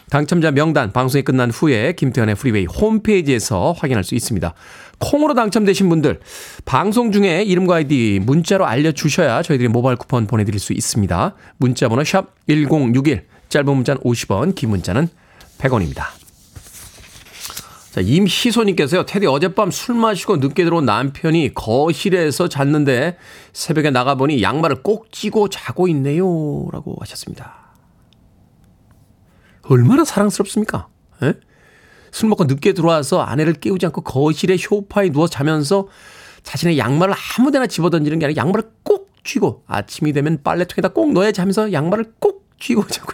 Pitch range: 130-200 Hz